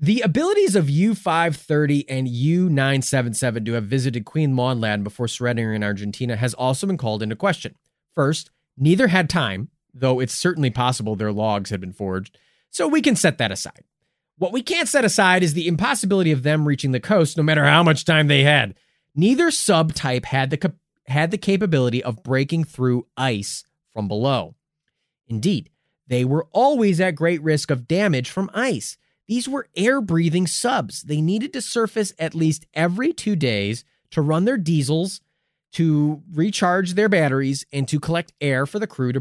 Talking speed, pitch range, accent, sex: 170 wpm, 130-185 Hz, American, male